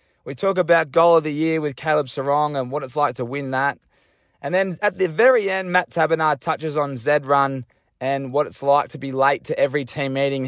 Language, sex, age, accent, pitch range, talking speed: English, male, 20-39, Australian, 130-155 Hz, 230 wpm